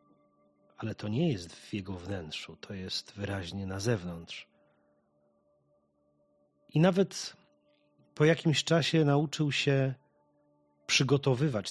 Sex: male